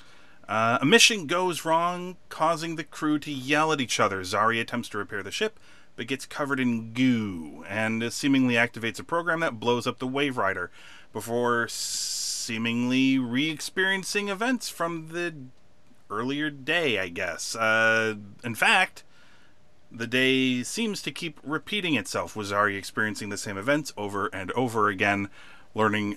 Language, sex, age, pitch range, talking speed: English, male, 30-49, 105-145 Hz, 150 wpm